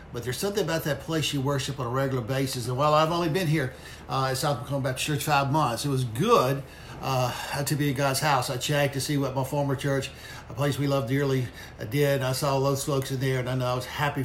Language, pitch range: English, 130-160 Hz